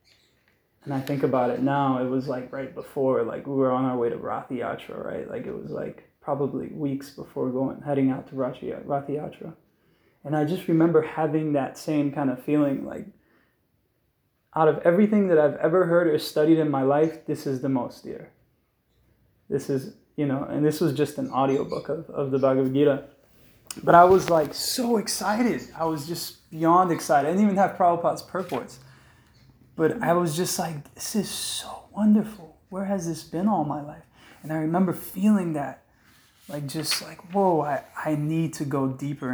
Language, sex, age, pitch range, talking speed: English, male, 20-39, 135-160 Hz, 190 wpm